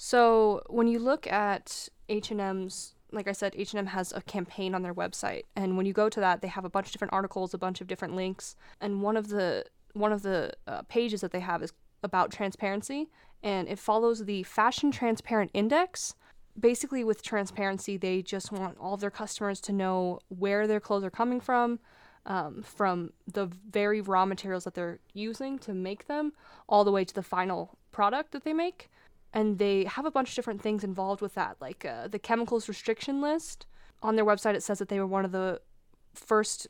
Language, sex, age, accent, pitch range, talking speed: English, female, 10-29, American, 190-225 Hz, 205 wpm